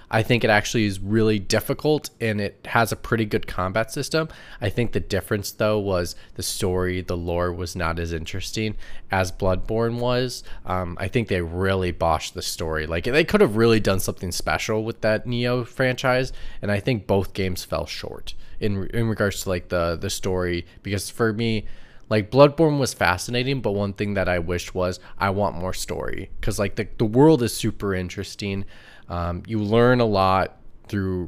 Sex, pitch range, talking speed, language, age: male, 90-110 Hz, 190 wpm, English, 20-39